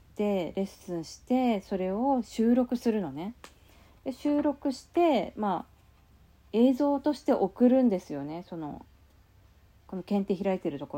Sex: female